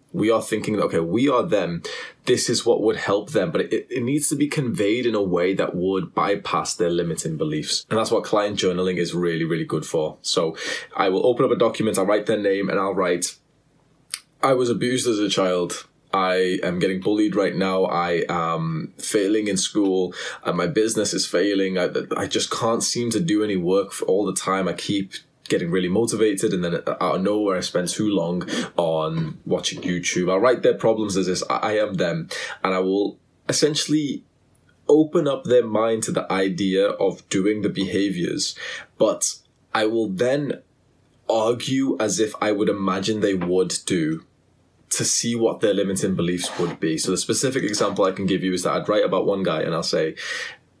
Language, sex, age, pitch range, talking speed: English, male, 20-39, 95-115 Hz, 200 wpm